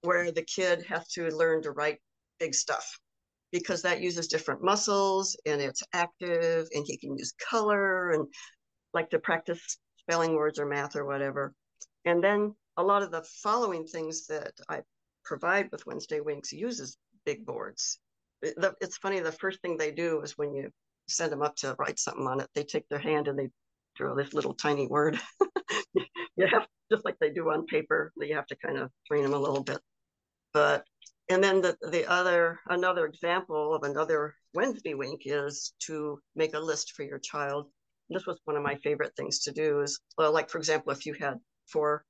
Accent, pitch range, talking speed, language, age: American, 150-190 Hz, 190 wpm, English, 60-79